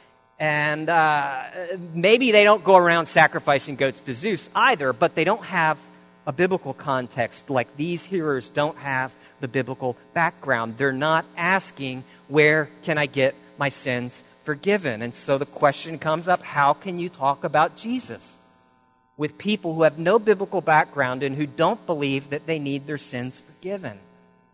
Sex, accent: male, American